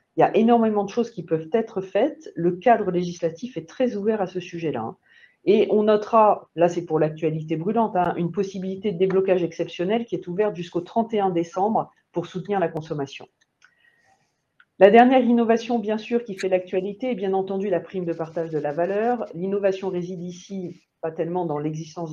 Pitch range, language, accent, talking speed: 170-215 Hz, French, French, 185 wpm